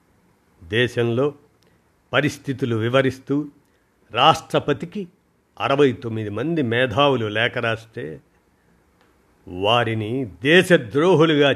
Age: 50-69